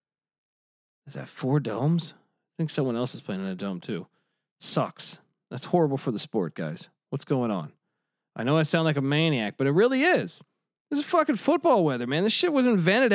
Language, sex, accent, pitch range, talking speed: English, male, American, 130-175 Hz, 205 wpm